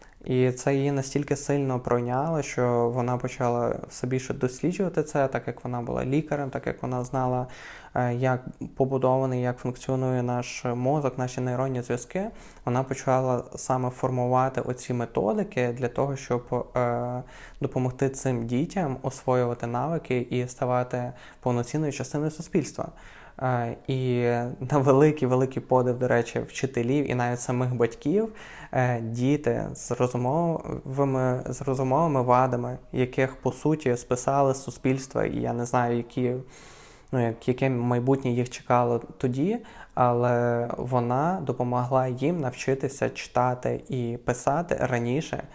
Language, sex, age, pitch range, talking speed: Ukrainian, male, 20-39, 125-135 Hz, 125 wpm